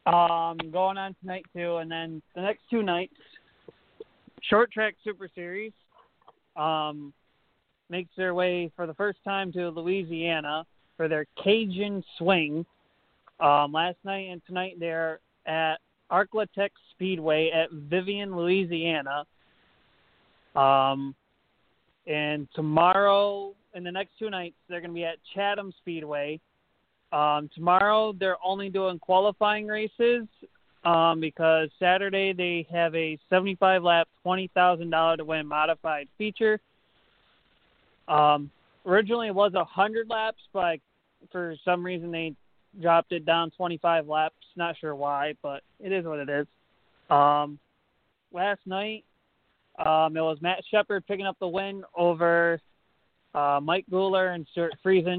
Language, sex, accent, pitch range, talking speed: English, male, American, 160-195 Hz, 130 wpm